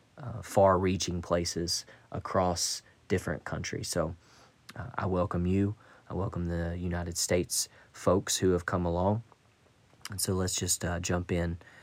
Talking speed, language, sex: 140 wpm, English, male